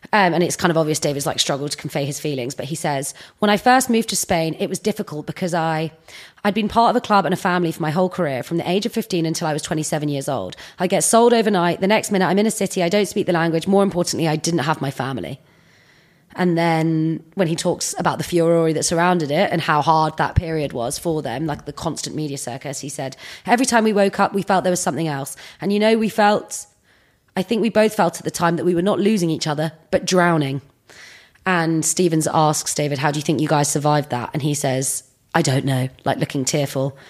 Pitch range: 150-185 Hz